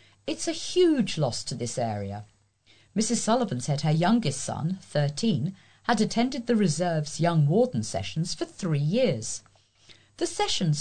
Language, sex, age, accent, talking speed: English, female, 50-69, British, 145 wpm